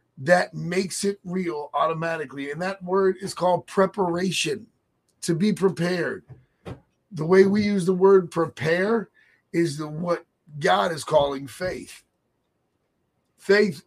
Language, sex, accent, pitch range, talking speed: English, male, American, 155-190 Hz, 125 wpm